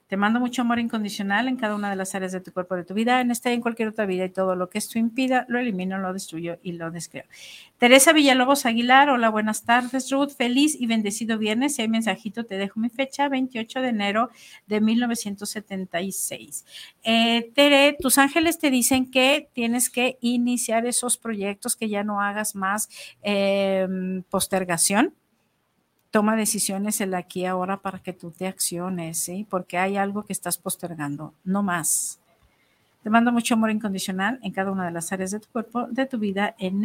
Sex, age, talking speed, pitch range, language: female, 50-69, 190 wpm, 190-240 Hz, Spanish